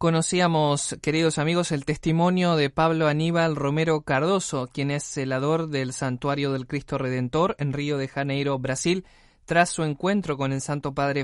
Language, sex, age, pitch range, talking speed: Spanish, male, 20-39, 140-170 Hz, 160 wpm